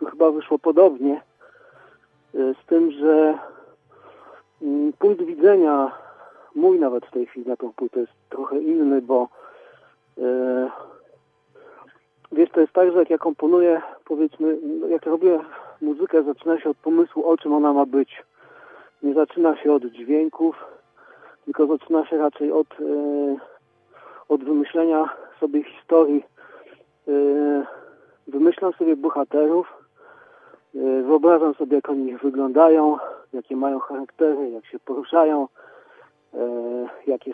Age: 40-59